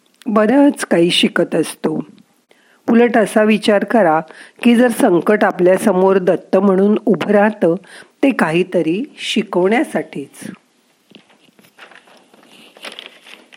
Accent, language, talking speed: native, Marathi, 90 wpm